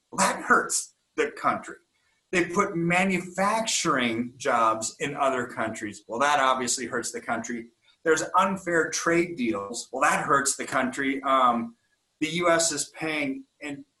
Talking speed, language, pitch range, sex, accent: 135 wpm, English, 120-180 Hz, male, American